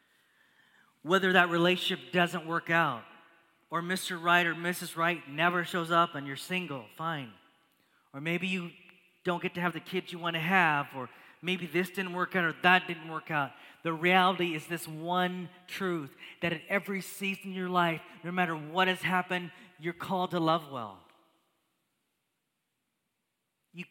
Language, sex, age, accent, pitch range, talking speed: English, male, 30-49, American, 140-180 Hz, 170 wpm